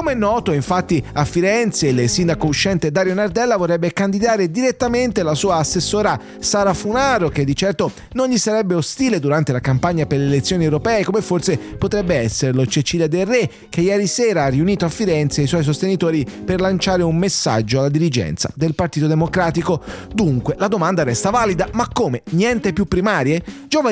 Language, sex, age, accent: English, male, 30-49, Italian